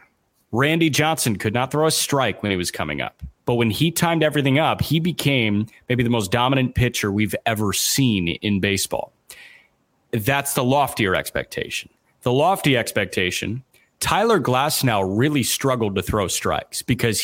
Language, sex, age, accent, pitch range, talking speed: English, male, 30-49, American, 105-135 Hz, 160 wpm